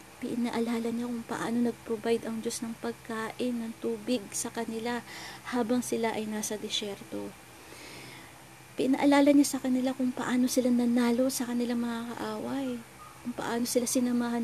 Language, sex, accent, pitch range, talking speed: Filipino, female, native, 210-245 Hz, 140 wpm